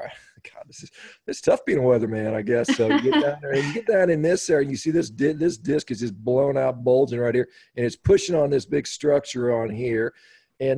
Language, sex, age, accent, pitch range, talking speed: English, male, 40-59, American, 115-145 Hz, 255 wpm